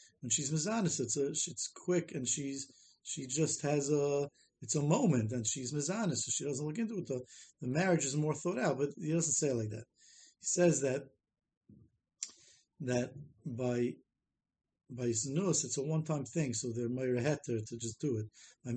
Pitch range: 120-155 Hz